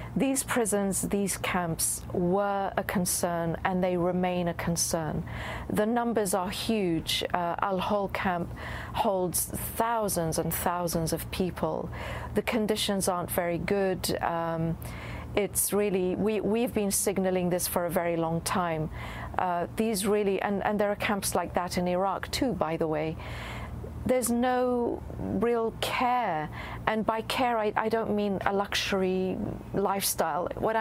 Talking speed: 135 wpm